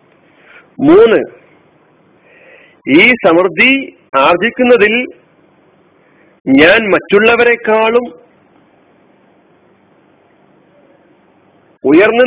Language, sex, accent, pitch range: Malayalam, male, native, 150-245 Hz